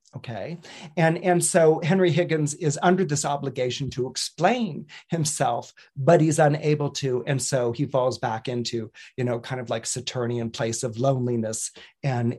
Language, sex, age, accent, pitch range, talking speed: English, male, 40-59, American, 130-170 Hz, 160 wpm